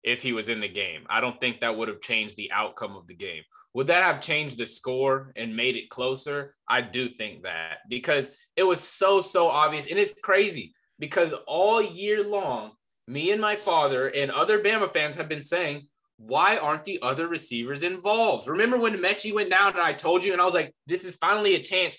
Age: 20-39